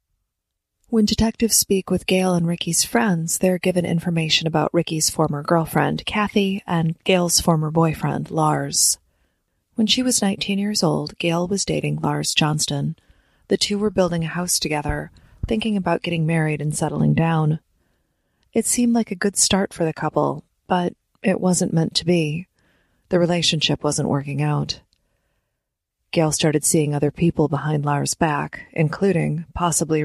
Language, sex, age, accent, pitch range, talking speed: English, female, 30-49, American, 150-180 Hz, 150 wpm